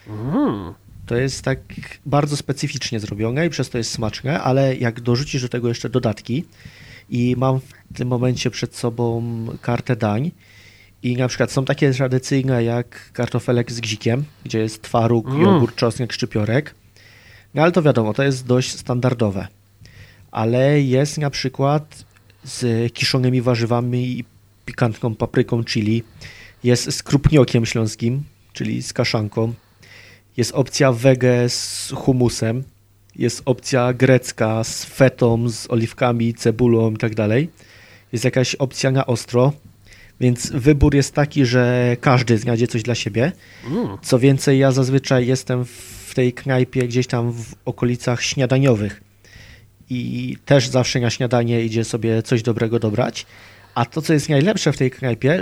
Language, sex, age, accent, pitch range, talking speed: Polish, male, 30-49, native, 110-130 Hz, 140 wpm